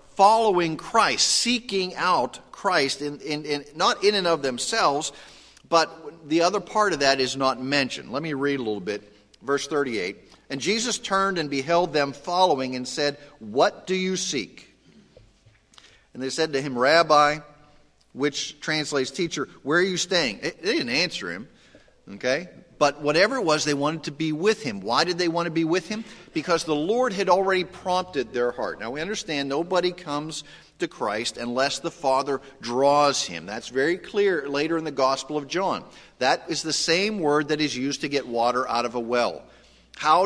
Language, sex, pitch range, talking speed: English, male, 140-180 Hz, 185 wpm